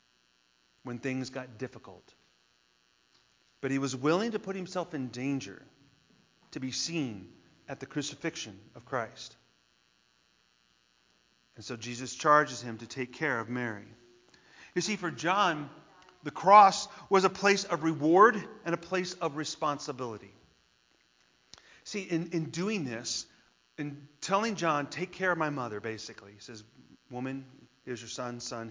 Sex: male